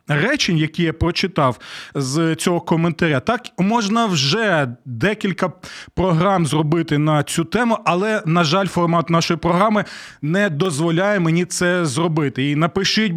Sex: male